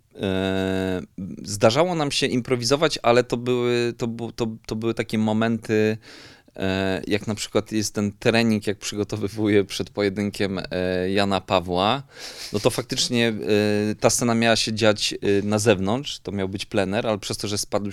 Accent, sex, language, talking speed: native, male, Polish, 135 wpm